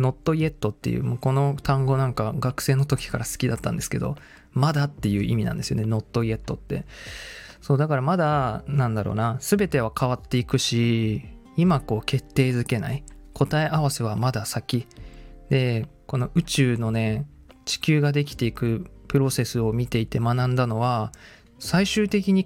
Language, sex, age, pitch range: Japanese, male, 20-39, 115-140 Hz